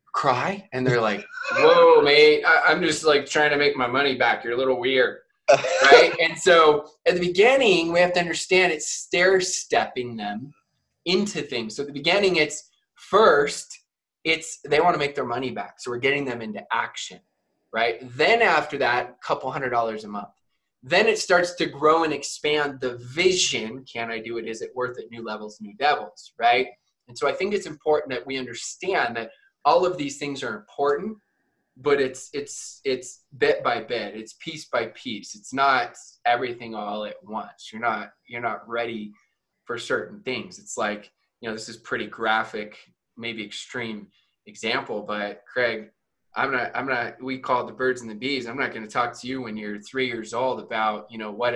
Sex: male